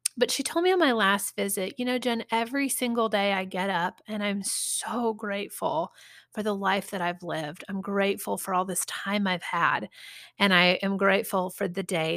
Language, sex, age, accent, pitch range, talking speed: English, female, 30-49, American, 180-230 Hz, 205 wpm